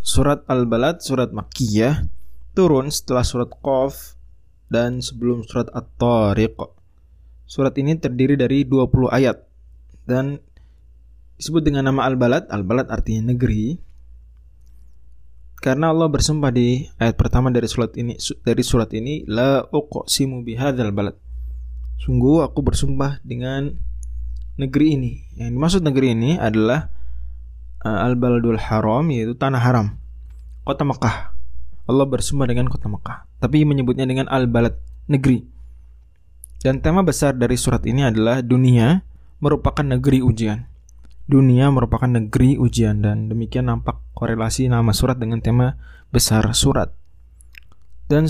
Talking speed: 120 wpm